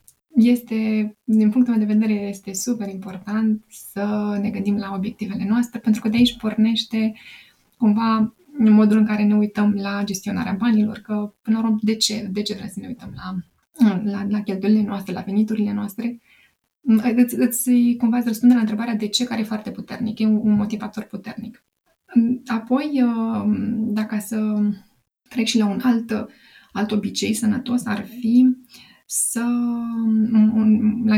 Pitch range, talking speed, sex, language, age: 210-235 Hz, 155 wpm, female, Romanian, 20-39